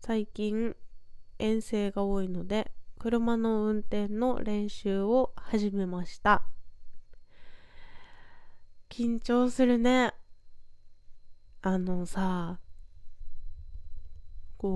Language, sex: Japanese, female